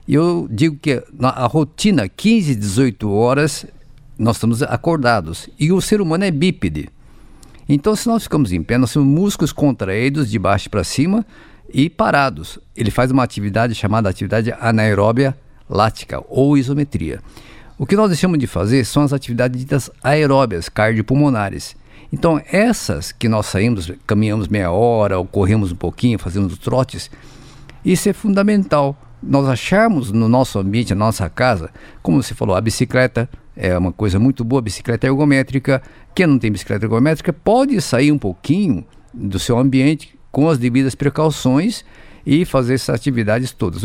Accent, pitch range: Brazilian, 110-145 Hz